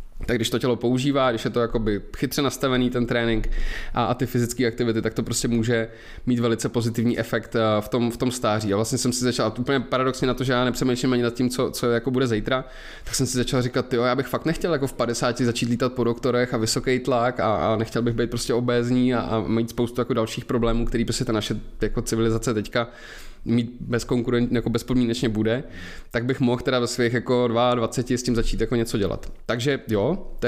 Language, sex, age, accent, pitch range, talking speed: Czech, male, 20-39, native, 115-125 Hz, 225 wpm